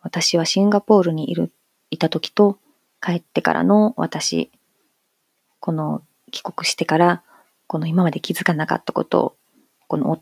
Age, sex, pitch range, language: 30-49, female, 170-220 Hz, Japanese